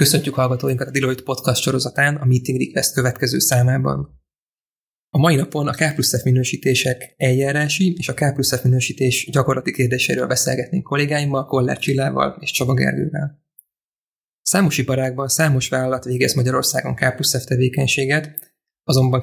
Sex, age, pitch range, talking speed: male, 20-39, 130-145 Hz, 135 wpm